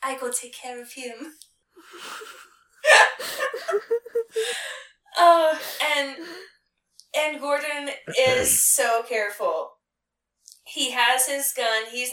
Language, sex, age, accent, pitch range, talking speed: English, female, 10-29, American, 220-285 Hz, 90 wpm